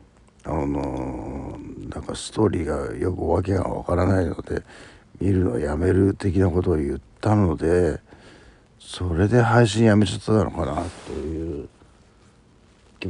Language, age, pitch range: Japanese, 60-79, 80-105 Hz